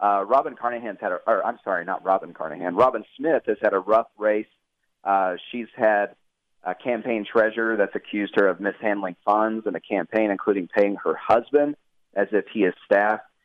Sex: male